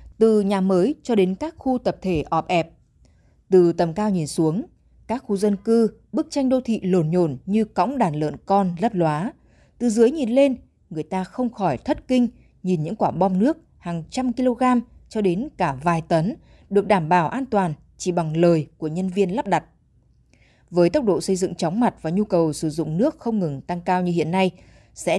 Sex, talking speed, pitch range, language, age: female, 215 wpm, 170-230 Hz, Vietnamese, 20-39